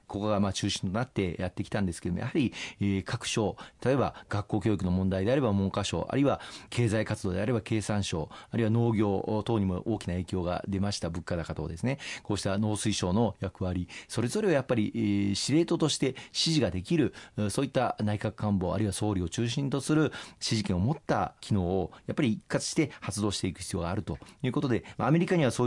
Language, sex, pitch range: Japanese, male, 95-115 Hz